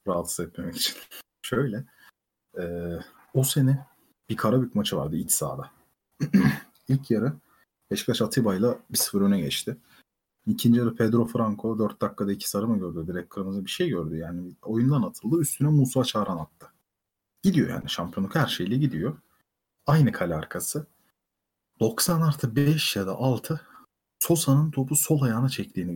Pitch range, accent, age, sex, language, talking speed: 100-155 Hz, native, 40-59, male, Turkish, 140 wpm